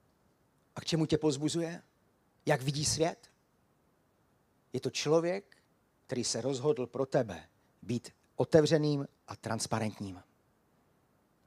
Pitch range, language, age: 120-175 Hz, Czech, 40-59